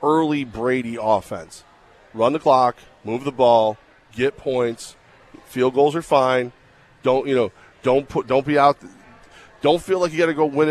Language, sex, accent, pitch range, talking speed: English, male, American, 115-140 Hz, 175 wpm